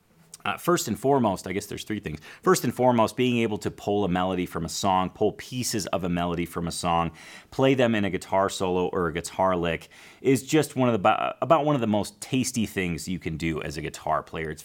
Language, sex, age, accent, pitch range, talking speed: English, male, 30-49, American, 90-120 Hz, 240 wpm